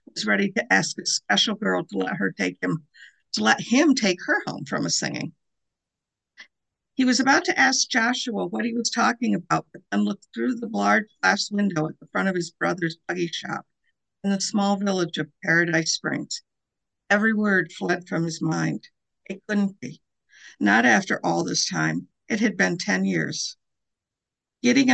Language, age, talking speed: English, 50-69, 180 wpm